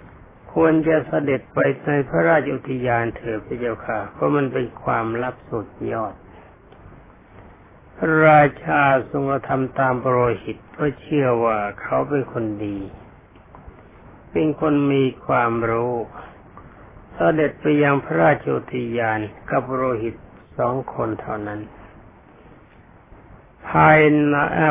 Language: Thai